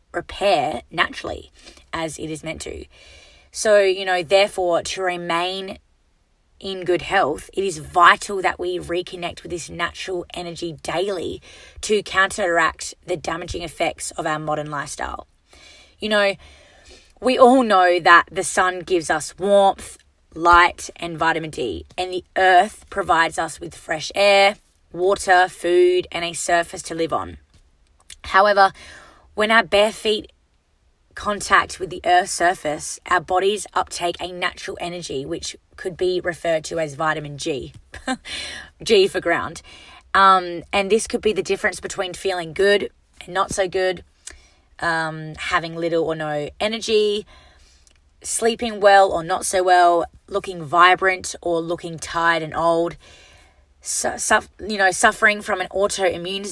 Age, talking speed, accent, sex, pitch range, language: 20-39, 145 wpm, Australian, female, 165-195 Hz, English